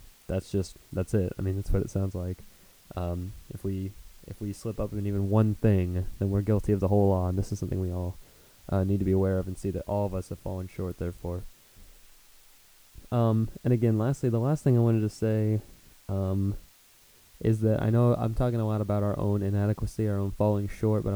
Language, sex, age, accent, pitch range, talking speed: English, male, 20-39, American, 95-110 Hz, 225 wpm